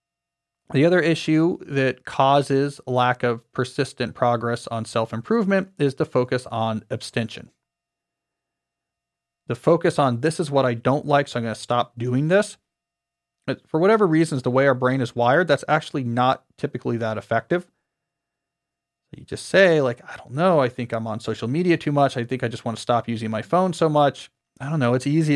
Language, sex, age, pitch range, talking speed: English, male, 40-59, 120-155 Hz, 185 wpm